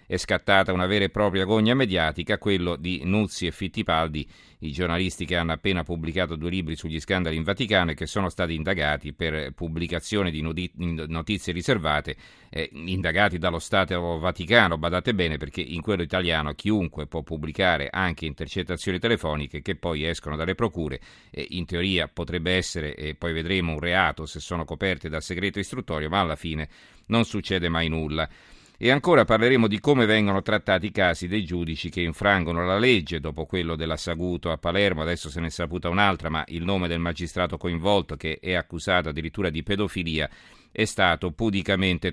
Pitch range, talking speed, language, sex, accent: 80-100 Hz, 170 wpm, Italian, male, native